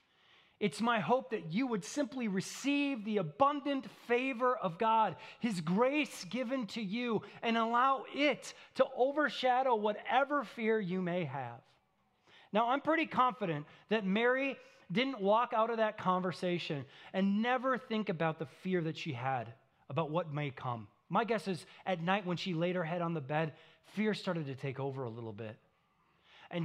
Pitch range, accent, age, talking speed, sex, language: 135-215 Hz, American, 30-49, 170 wpm, male, English